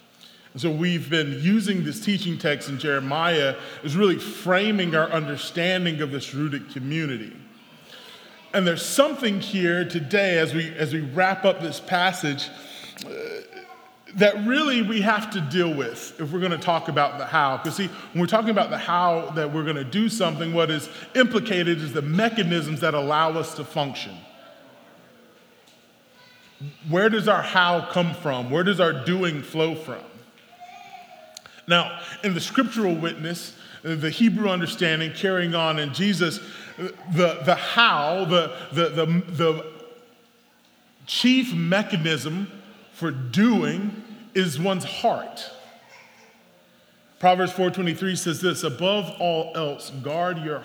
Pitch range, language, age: 160-205 Hz, English, 30-49